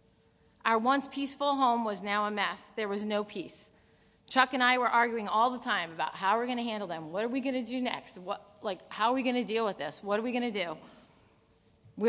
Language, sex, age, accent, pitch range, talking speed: English, female, 40-59, American, 200-245 Hz, 235 wpm